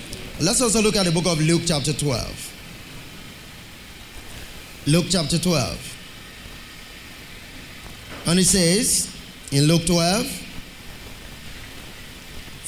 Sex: male